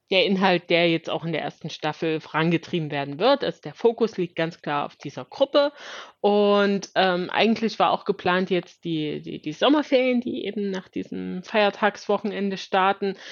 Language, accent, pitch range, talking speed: German, German, 160-205 Hz, 170 wpm